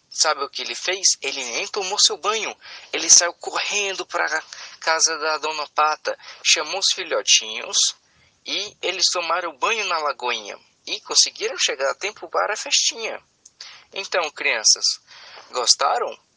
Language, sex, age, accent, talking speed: Portuguese, male, 20-39, Brazilian, 145 wpm